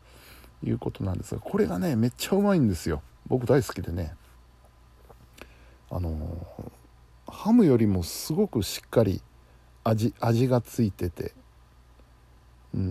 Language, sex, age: Japanese, male, 60-79